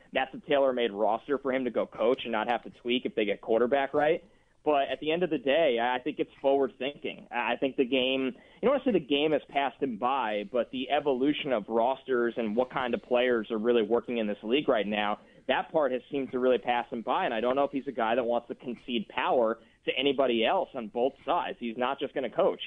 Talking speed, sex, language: 255 wpm, male, English